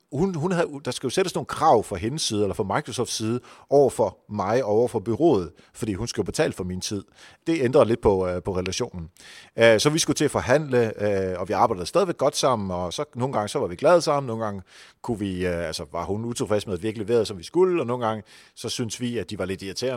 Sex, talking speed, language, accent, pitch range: male, 255 wpm, Danish, native, 100-150 Hz